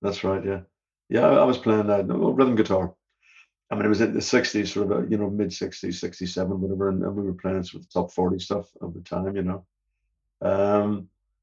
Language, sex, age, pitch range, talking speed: English, male, 50-69, 90-105 Hz, 215 wpm